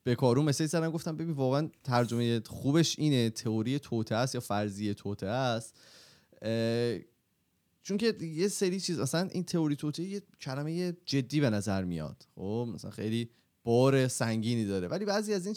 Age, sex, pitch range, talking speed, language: 30-49, male, 110-145 Hz, 160 wpm, Persian